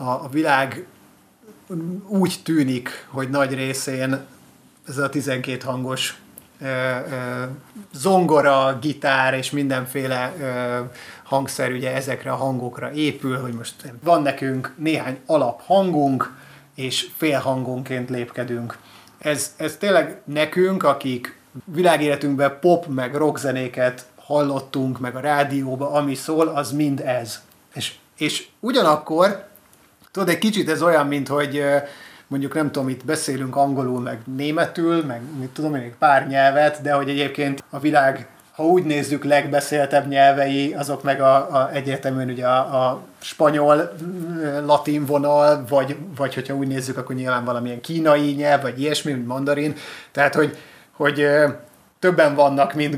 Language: Hungarian